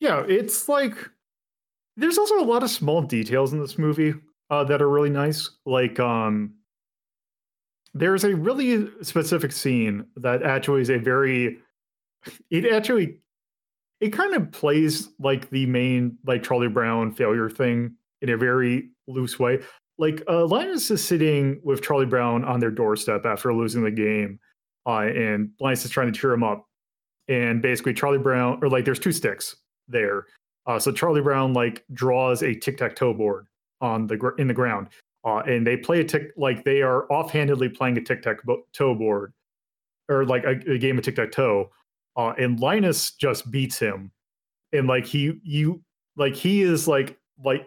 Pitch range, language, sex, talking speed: 120-150 Hz, English, male, 165 wpm